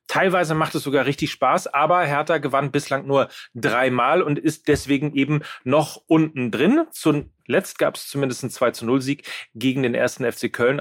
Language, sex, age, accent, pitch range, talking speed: German, male, 40-59, German, 120-150 Hz, 180 wpm